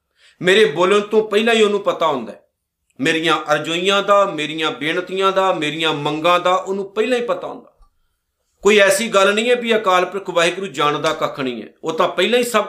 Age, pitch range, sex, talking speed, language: 50-69, 150-205 Hz, male, 195 wpm, Punjabi